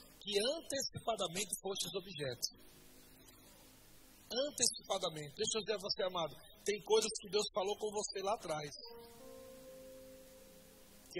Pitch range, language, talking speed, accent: 180-220 Hz, Portuguese, 115 wpm, Brazilian